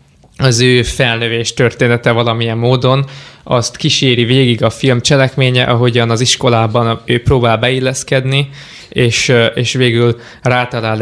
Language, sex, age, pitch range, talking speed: Hungarian, male, 20-39, 115-130 Hz, 120 wpm